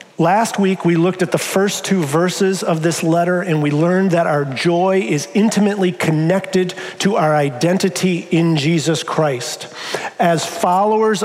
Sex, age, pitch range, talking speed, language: male, 50-69, 170-210 Hz, 155 wpm, English